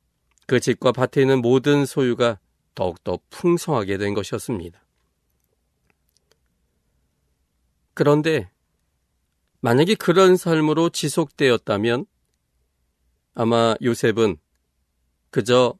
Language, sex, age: Korean, male, 40-59